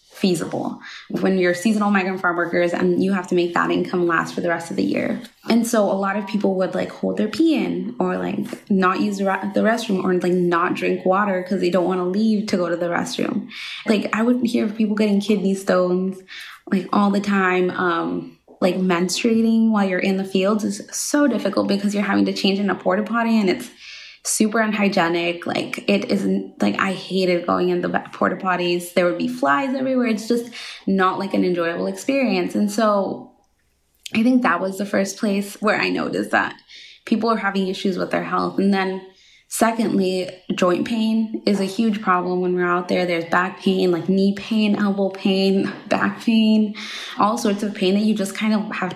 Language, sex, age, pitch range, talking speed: English, female, 20-39, 180-215 Hz, 205 wpm